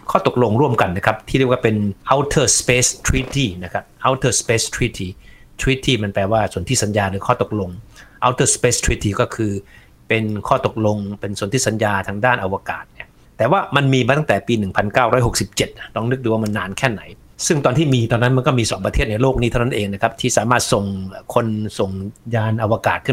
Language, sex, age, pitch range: Thai, male, 60-79, 105-130 Hz